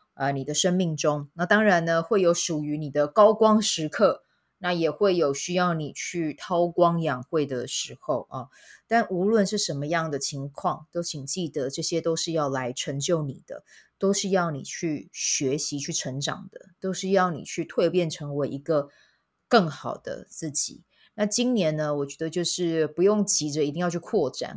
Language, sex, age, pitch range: Chinese, female, 20-39, 145-185 Hz